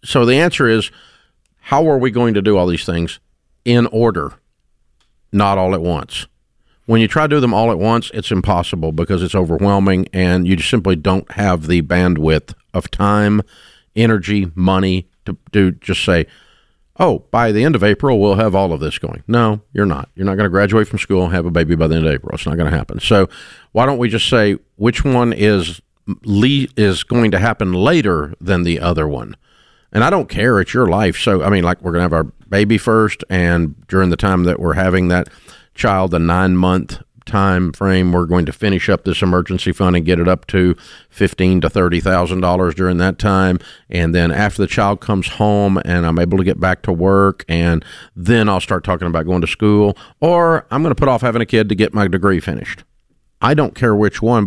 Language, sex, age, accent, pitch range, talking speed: English, male, 50-69, American, 90-110 Hz, 215 wpm